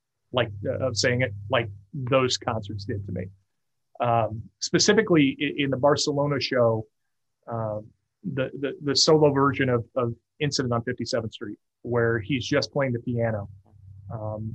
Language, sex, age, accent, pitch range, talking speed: English, male, 30-49, American, 115-140 Hz, 155 wpm